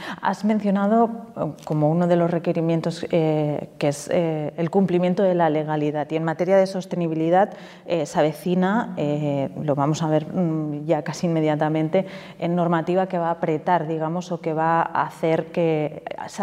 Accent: Spanish